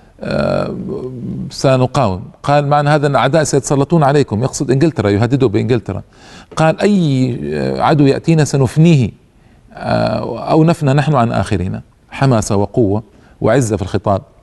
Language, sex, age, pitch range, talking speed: Arabic, male, 40-59, 110-145 Hz, 115 wpm